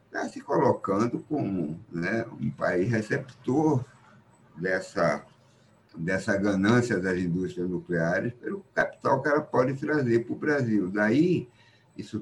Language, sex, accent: Portuguese, male, Brazilian